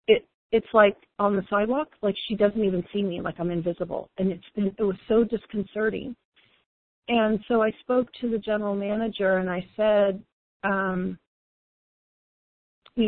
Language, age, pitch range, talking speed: English, 40-59, 190-225 Hz, 150 wpm